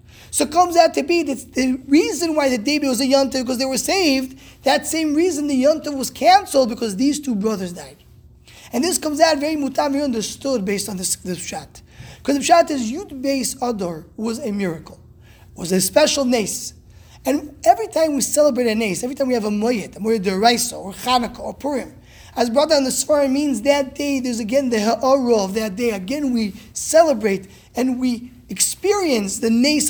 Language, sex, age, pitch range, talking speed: English, male, 20-39, 225-290 Hz, 205 wpm